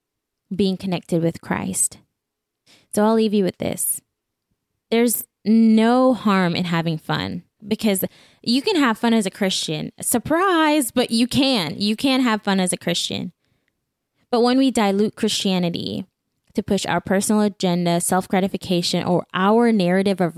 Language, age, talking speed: English, 10-29, 150 wpm